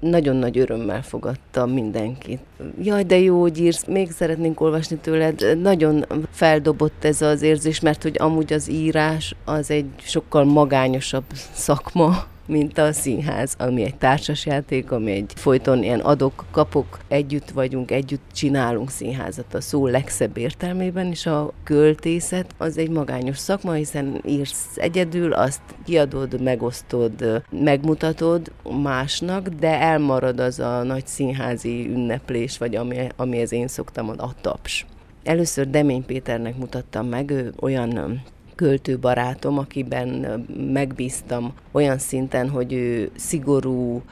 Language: Hungarian